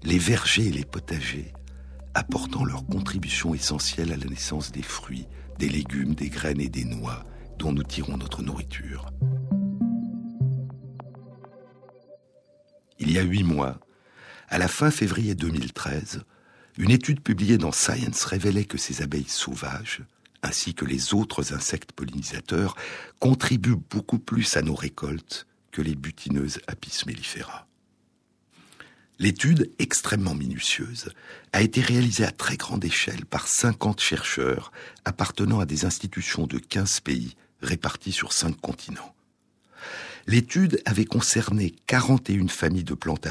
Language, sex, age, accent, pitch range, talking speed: French, male, 60-79, French, 70-110 Hz, 130 wpm